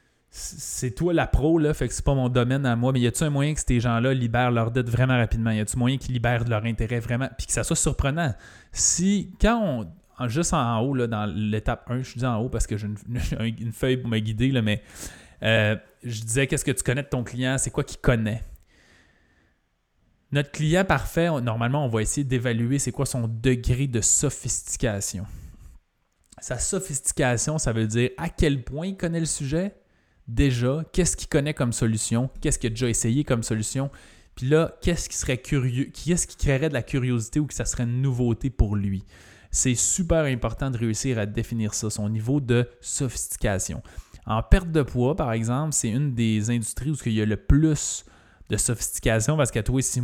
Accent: Canadian